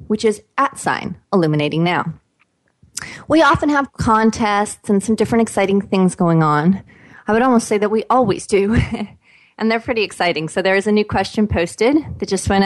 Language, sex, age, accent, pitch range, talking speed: English, female, 30-49, American, 160-215 Hz, 185 wpm